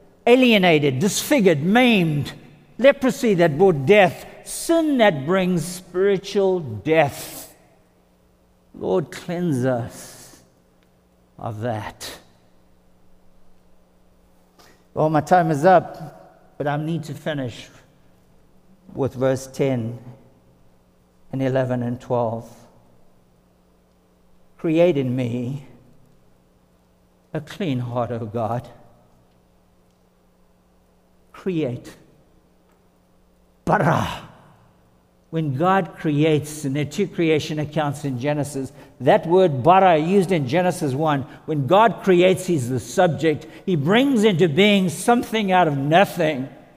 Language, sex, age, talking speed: English, male, 60-79, 100 wpm